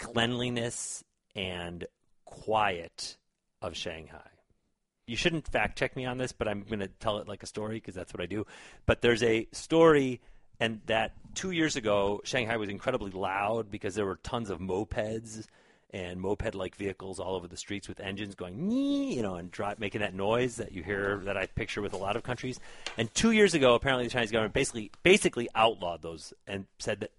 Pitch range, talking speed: 95-125 Hz, 190 wpm